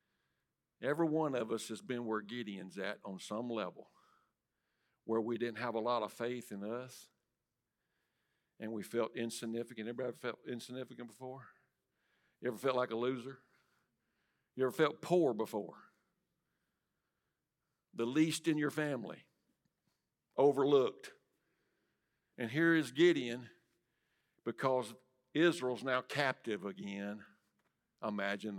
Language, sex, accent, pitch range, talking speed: English, male, American, 110-145 Hz, 120 wpm